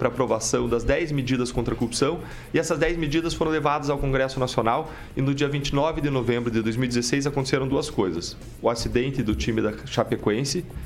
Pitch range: 125-170 Hz